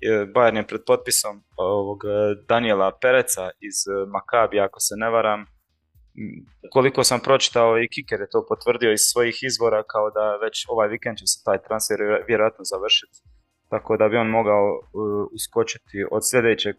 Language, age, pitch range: Croatian, 20-39, 105-125 Hz